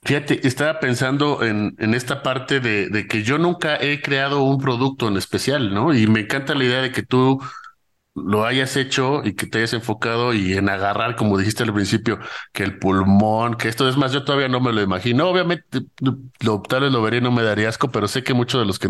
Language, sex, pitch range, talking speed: Spanish, male, 105-130 Hz, 230 wpm